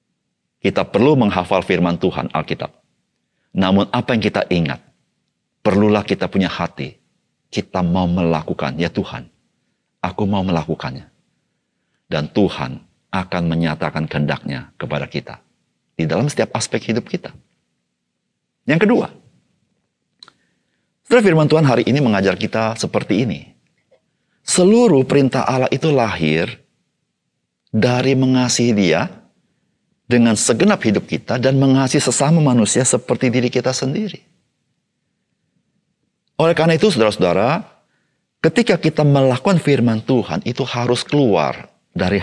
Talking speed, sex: 115 wpm, male